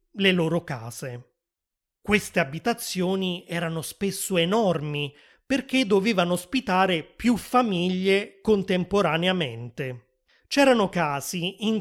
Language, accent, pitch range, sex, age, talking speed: Italian, native, 165-210 Hz, male, 30-49, 85 wpm